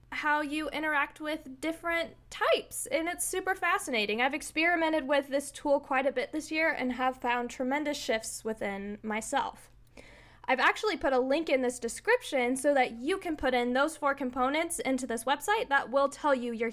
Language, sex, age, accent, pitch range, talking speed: English, female, 10-29, American, 245-320 Hz, 185 wpm